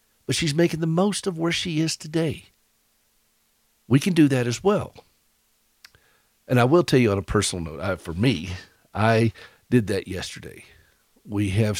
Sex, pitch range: male, 95-120 Hz